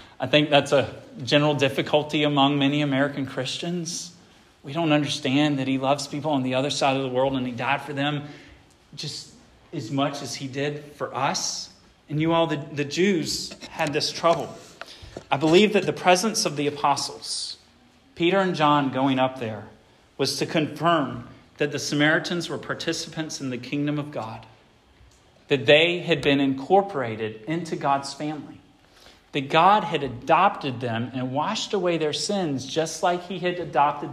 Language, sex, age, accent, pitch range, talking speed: English, male, 40-59, American, 140-170 Hz, 170 wpm